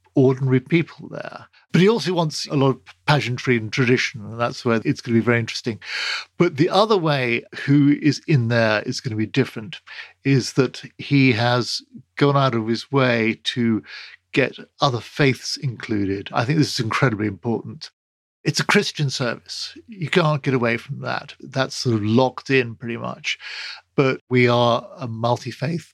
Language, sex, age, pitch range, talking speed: English, male, 50-69, 120-145 Hz, 180 wpm